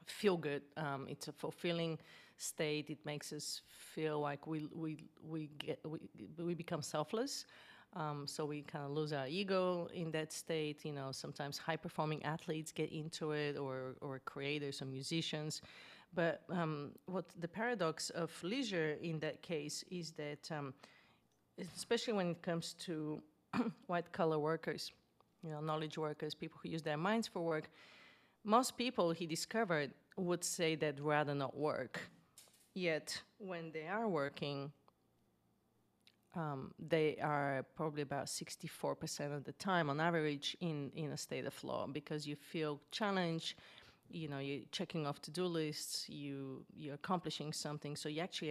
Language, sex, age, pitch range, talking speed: English, female, 30-49, 145-170 Hz, 155 wpm